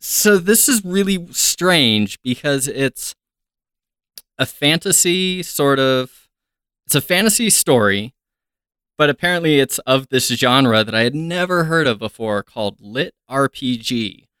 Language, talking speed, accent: English, 130 wpm, American